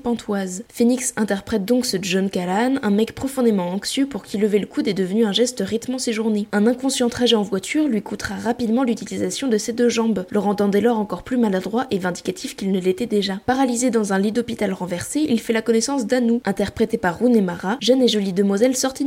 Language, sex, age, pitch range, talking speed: French, female, 20-39, 200-240 Hz, 215 wpm